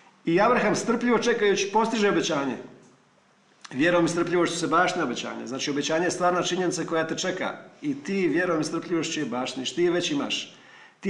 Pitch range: 170-225 Hz